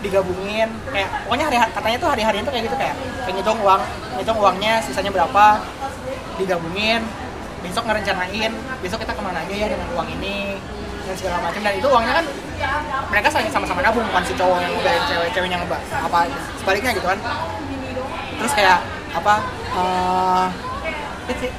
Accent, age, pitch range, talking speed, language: native, 20-39, 200-235 Hz, 145 wpm, Indonesian